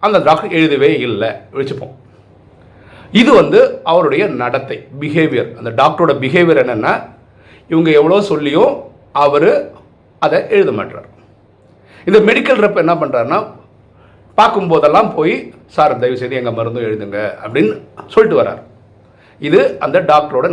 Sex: male